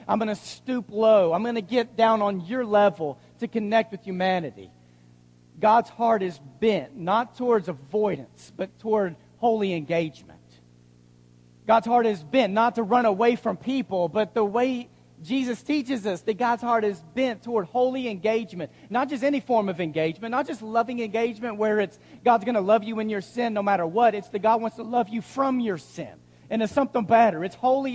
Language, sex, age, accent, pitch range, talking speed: English, male, 40-59, American, 190-235 Hz, 195 wpm